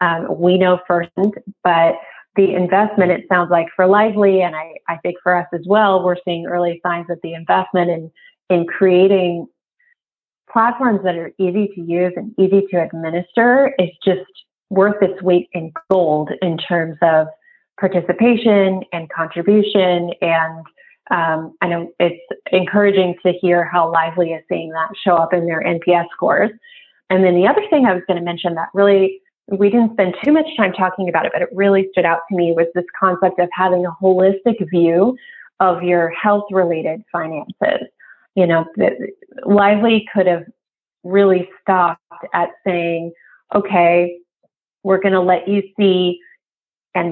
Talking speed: 165 wpm